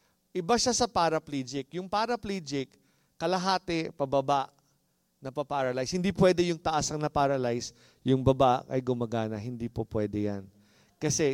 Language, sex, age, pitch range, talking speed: English, male, 50-69, 130-195 Hz, 125 wpm